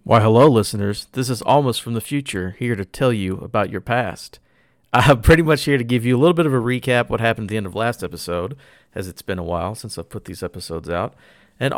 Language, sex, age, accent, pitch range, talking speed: English, male, 40-59, American, 95-130 Hz, 255 wpm